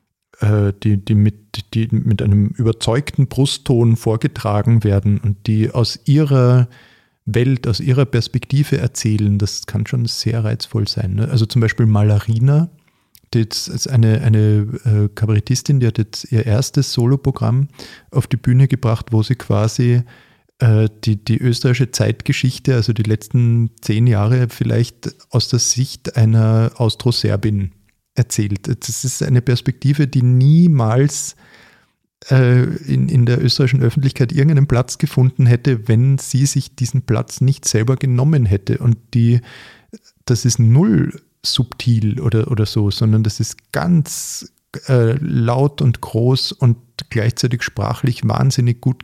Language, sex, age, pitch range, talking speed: German, male, 40-59, 110-130 Hz, 135 wpm